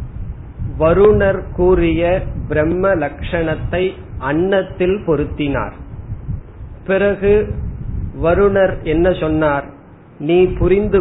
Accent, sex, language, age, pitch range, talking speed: native, male, Tamil, 40-59, 150-185 Hz, 65 wpm